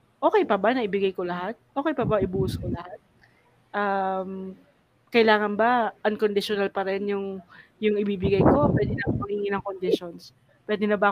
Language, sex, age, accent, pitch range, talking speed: Filipino, female, 20-39, native, 190-240 Hz, 165 wpm